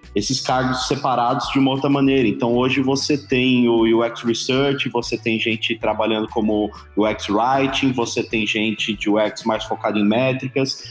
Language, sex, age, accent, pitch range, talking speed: Portuguese, male, 20-39, Brazilian, 120-145 Hz, 165 wpm